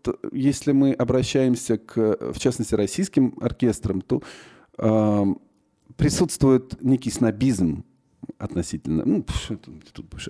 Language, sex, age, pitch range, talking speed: Russian, male, 40-59, 100-130 Hz, 100 wpm